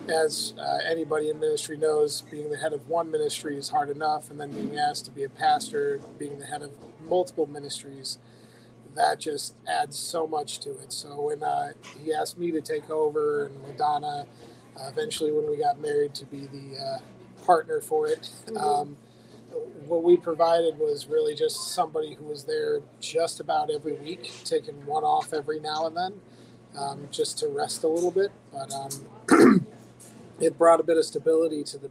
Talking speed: 185 wpm